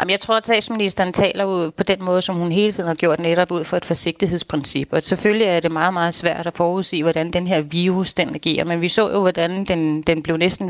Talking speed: 240 wpm